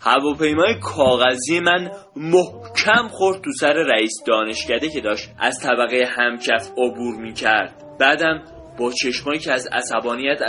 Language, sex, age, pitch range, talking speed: Persian, male, 20-39, 125-195 Hz, 130 wpm